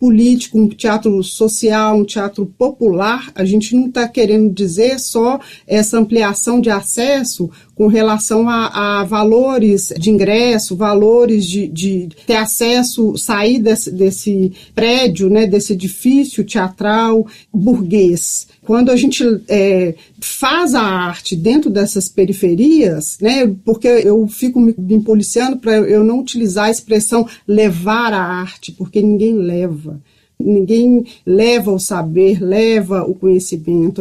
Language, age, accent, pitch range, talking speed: Portuguese, 40-59, Brazilian, 195-240 Hz, 130 wpm